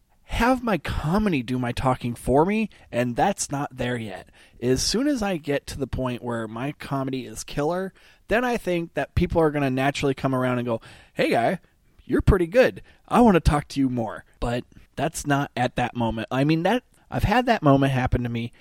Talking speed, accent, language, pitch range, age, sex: 215 wpm, American, English, 125-175 Hz, 20-39, male